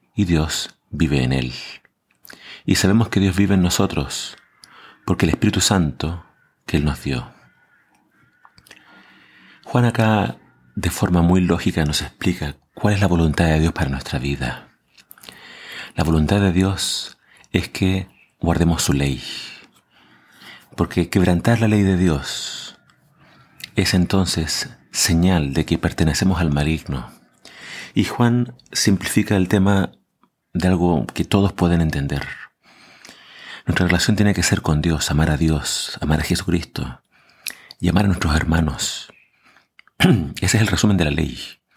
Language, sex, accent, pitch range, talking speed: Spanish, male, Argentinian, 80-100 Hz, 140 wpm